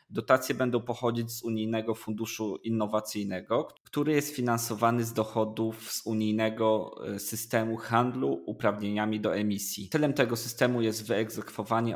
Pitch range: 105-115 Hz